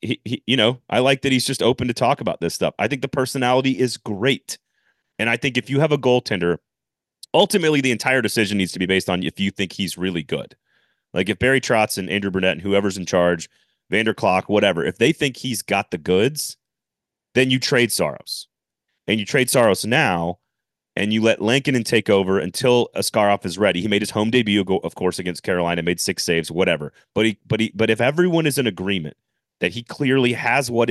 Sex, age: male, 30-49